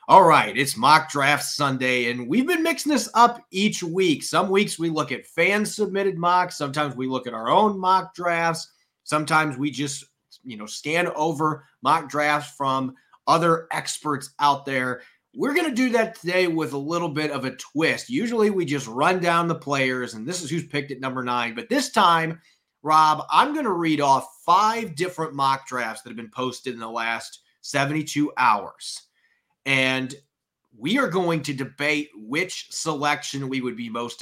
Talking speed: 185 wpm